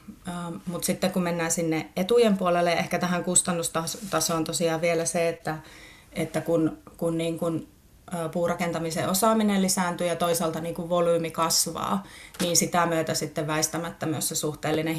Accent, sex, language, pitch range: native, female, Finnish, 160-180 Hz